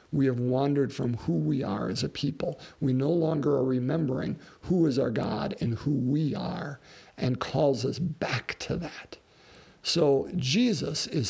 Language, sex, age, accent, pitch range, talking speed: English, male, 50-69, American, 130-160 Hz, 170 wpm